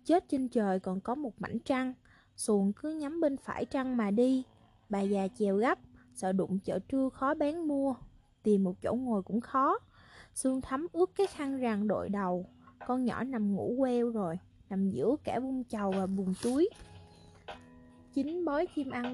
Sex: female